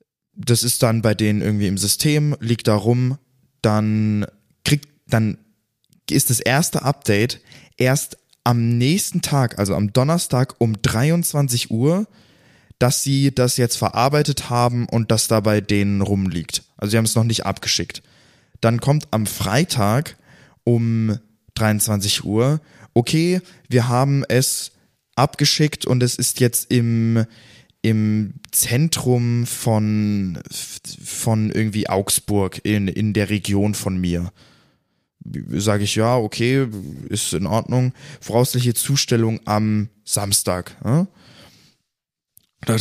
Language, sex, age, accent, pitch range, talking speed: German, male, 20-39, German, 105-135 Hz, 120 wpm